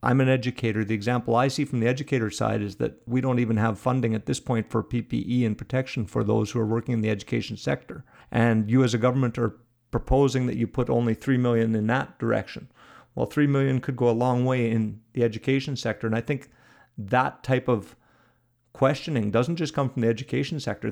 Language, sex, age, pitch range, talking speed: English, male, 50-69, 110-130 Hz, 220 wpm